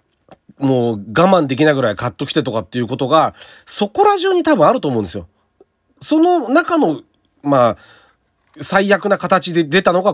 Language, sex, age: Japanese, male, 40-59